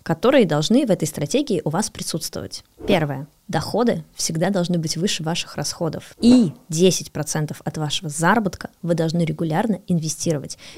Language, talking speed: Russian, 140 wpm